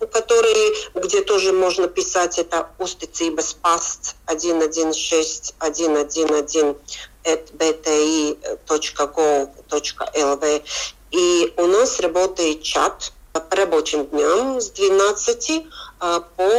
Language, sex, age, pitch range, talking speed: Russian, female, 40-59, 160-210 Hz, 80 wpm